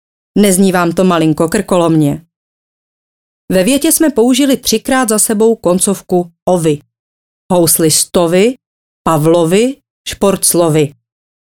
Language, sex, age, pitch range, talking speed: Czech, female, 30-49, 150-220 Hz, 90 wpm